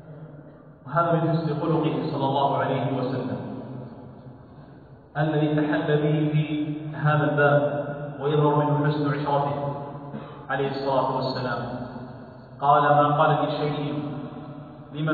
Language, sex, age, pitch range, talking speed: Arabic, male, 40-59, 145-175 Hz, 105 wpm